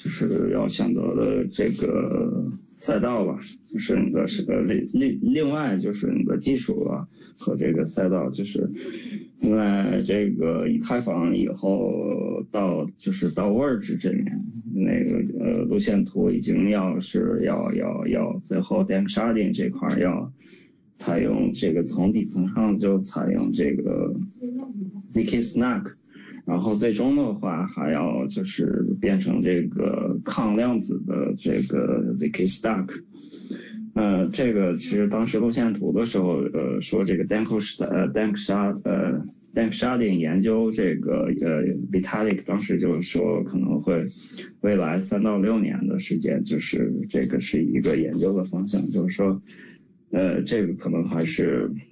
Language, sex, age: Chinese, male, 20-39